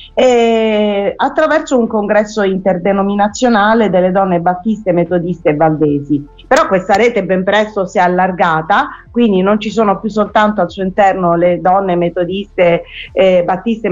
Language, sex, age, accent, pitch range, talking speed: Italian, female, 40-59, native, 175-220 Hz, 140 wpm